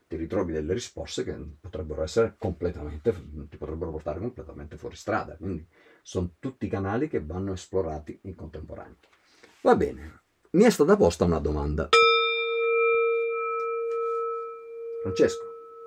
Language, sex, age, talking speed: Italian, male, 50-69, 130 wpm